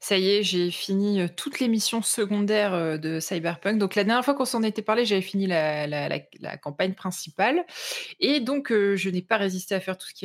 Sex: female